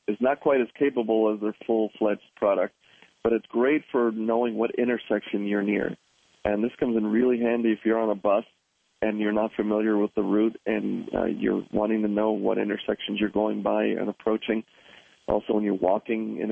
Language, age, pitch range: English, 40-59, 105-115 Hz